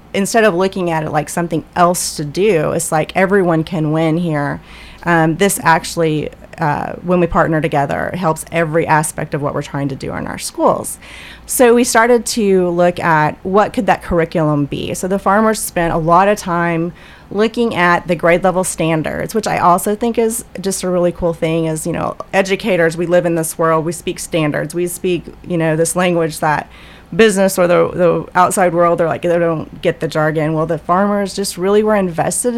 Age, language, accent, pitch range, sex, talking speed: 30-49, English, American, 165-195 Hz, female, 205 wpm